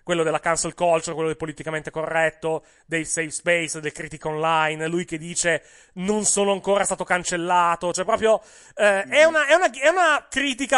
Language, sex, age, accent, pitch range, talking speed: Italian, male, 30-49, native, 160-215 Hz, 180 wpm